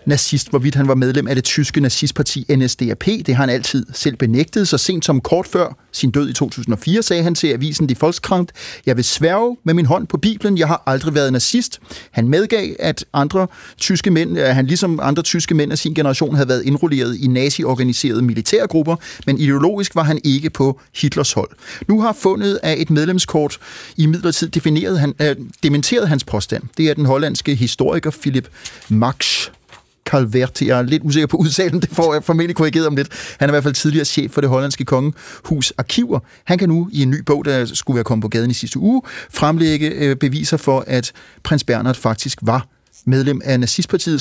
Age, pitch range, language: 30-49, 130-170 Hz, Danish